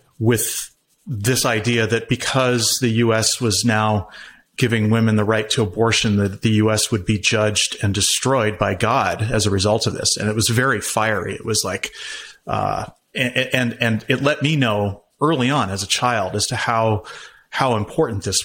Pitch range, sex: 105-130 Hz, male